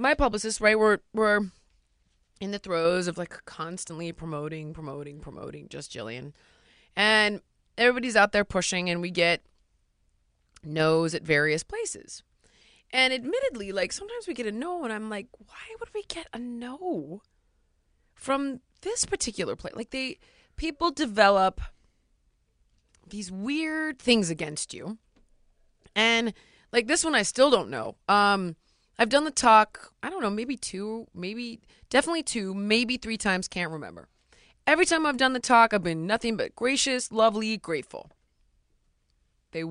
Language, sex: English, female